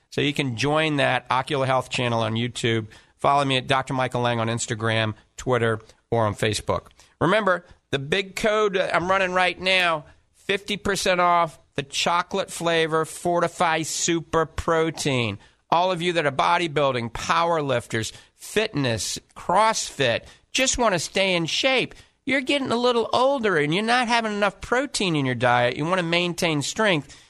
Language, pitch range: English, 130-175 Hz